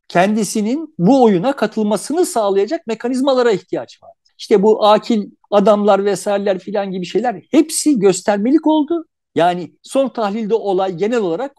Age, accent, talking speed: 50-69, native, 130 wpm